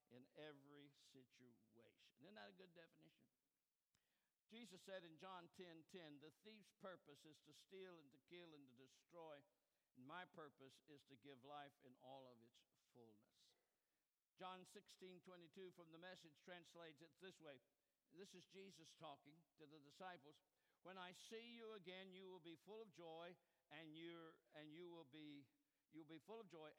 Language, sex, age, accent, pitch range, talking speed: English, male, 60-79, American, 145-200 Hz, 170 wpm